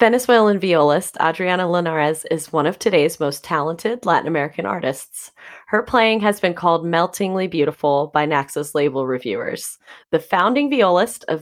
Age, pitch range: 30-49, 155-200 Hz